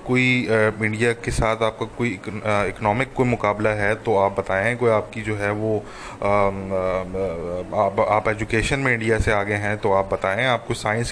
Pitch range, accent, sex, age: 105-125 Hz, Indian, male, 20-39